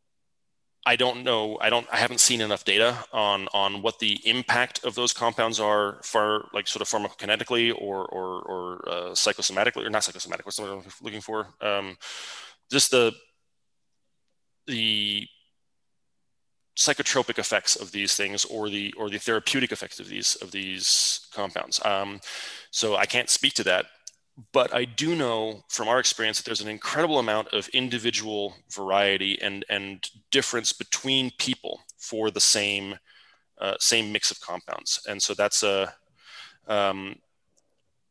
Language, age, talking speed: English, 20-39, 150 wpm